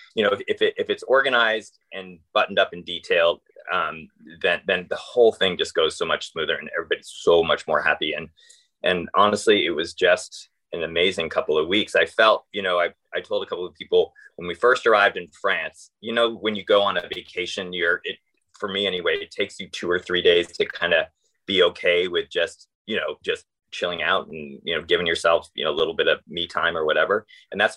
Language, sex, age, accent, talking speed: English, male, 20-39, American, 230 wpm